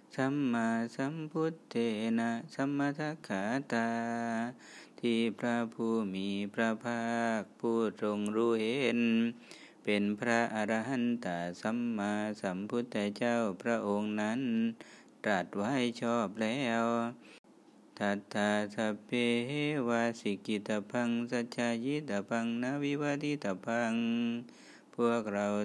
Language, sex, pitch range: Thai, male, 105-120 Hz